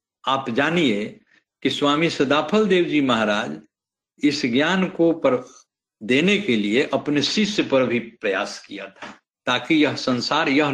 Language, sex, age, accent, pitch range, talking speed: Hindi, male, 60-79, native, 125-175 Hz, 145 wpm